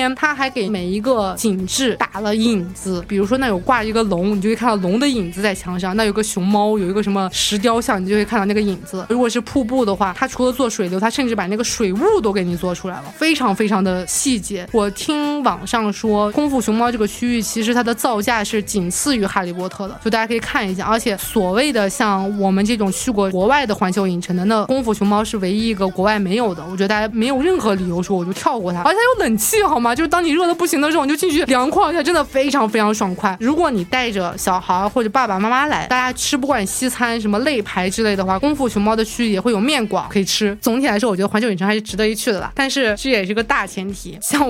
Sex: female